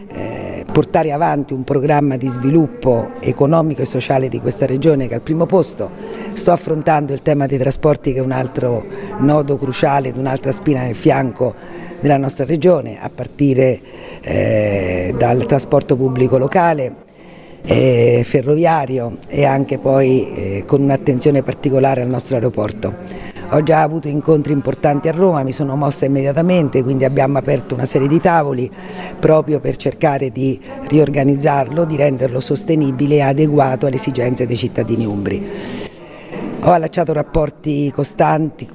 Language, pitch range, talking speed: Italian, 130-155 Hz, 145 wpm